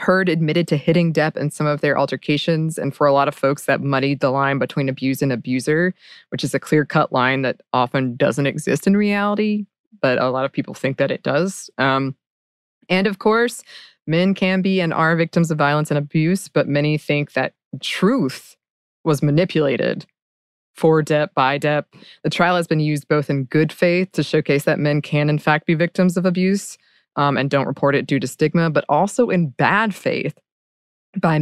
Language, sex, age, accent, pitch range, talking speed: English, female, 20-39, American, 140-170 Hz, 195 wpm